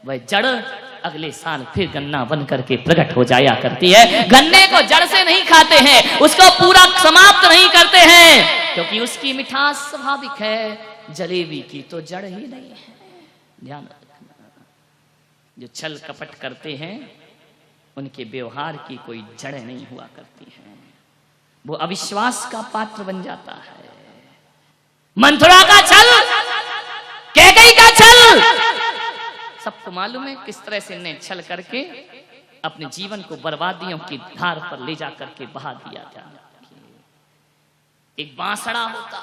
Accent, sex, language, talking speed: native, female, Hindi, 140 wpm